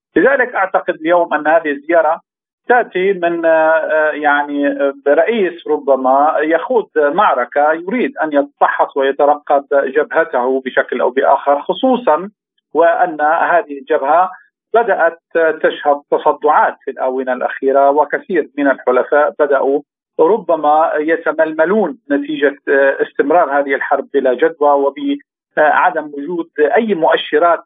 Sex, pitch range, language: male, 145-175 Hz, Arabic